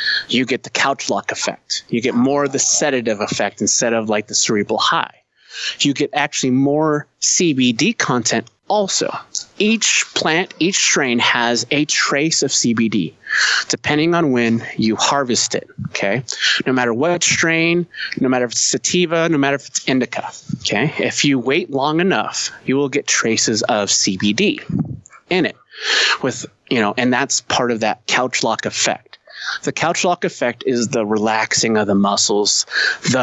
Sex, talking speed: male, 165 wpm